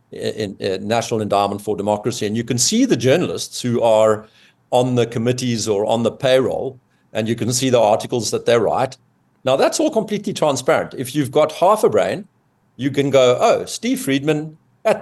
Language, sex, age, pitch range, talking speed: English, male, 50-69, 110-150 Hz, 190 wpm